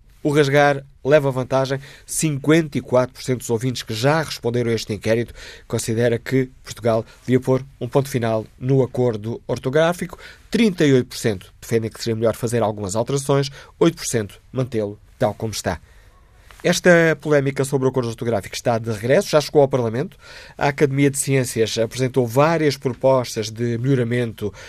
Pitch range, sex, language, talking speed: 115-145 Hz, male, Portuguese, 145 wpm